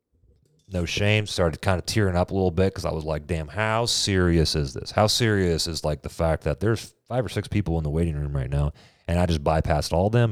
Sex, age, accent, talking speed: male, 30-49, American, 255 wpm